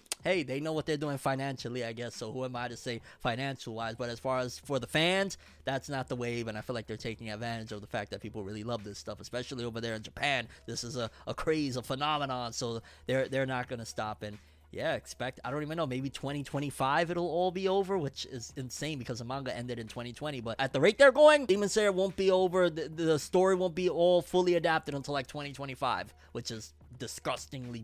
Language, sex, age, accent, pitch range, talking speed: English, male, 20-39, American, 125-175 Hz, 235 wpm